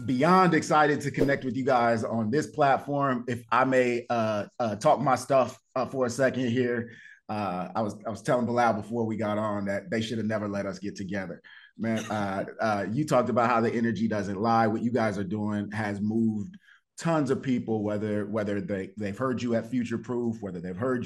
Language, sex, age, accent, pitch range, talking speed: English, male, 30-49, American, 105-120 Hz, 215 wpm